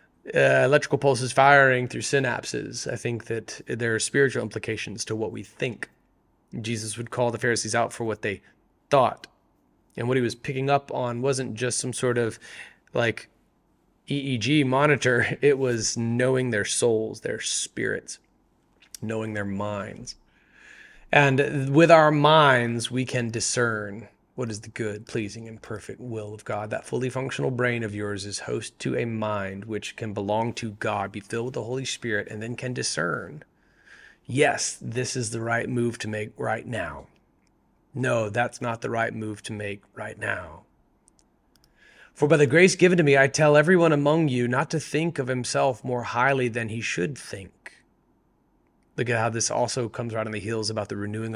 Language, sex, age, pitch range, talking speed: English, male, 30-49, 110-130 Hz, 175 wpm